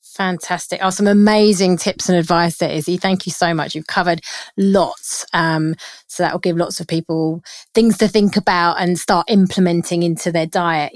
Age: 30-49